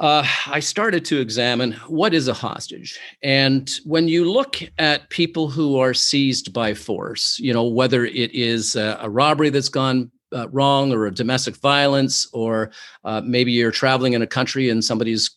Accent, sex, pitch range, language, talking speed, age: American, male, 115-140 Hz, English, 180 wpm, 50-69